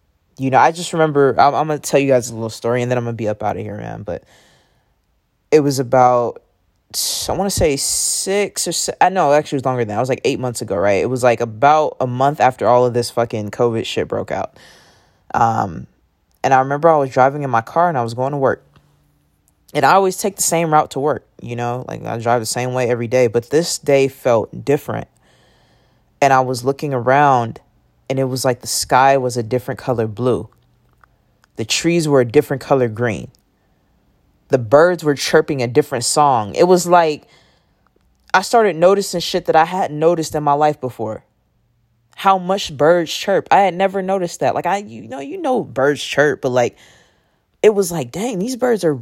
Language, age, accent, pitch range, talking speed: English, 20-39, American, 120-170 Hz, 220 wpm